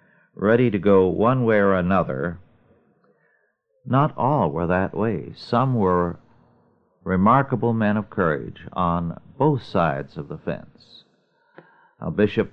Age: 50-69